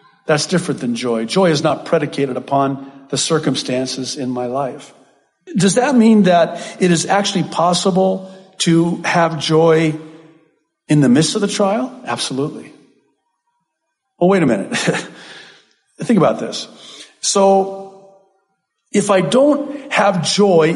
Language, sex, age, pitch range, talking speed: English, male, 50-69, 160-240 Hz, 130 wpm